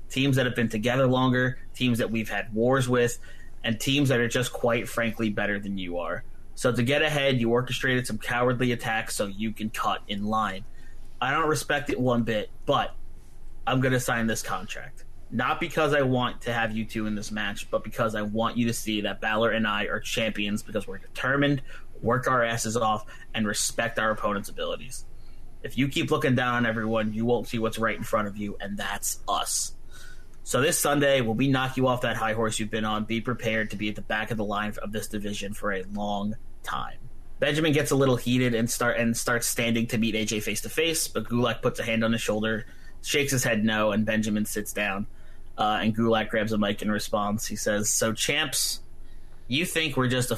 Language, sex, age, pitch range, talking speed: English, male, 30-49, 105-125 Hz, 220 wpm